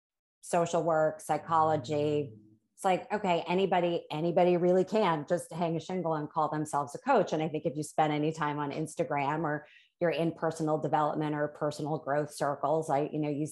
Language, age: English, 30-49